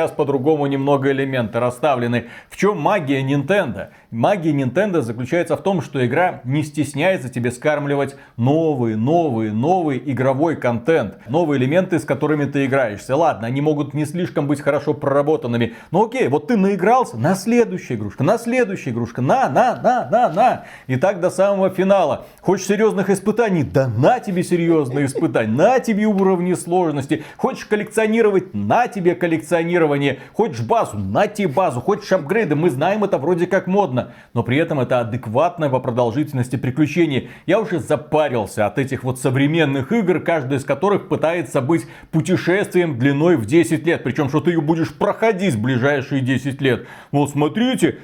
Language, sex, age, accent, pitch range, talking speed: Russian, male, 40-59, native, 135-180 Hz, 160 wpm